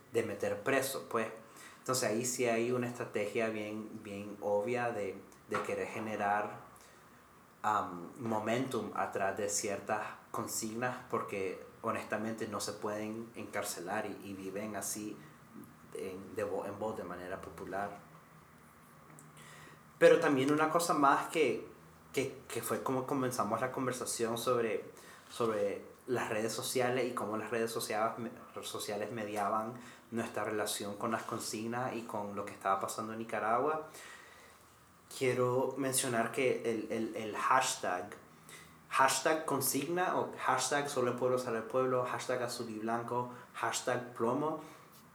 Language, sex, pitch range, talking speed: Spanish, male, 105-130 Hz, 135 wpm